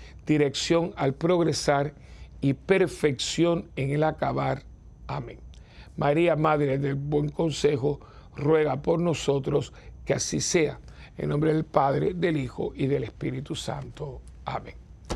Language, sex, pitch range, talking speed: Spanish, male, 140-175 Hz, 125 wpm